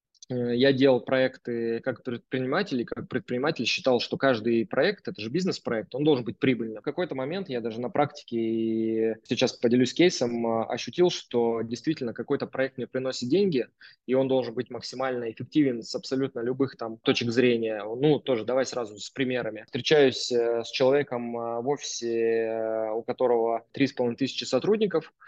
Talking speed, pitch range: 155 wpm, 120-140 Hz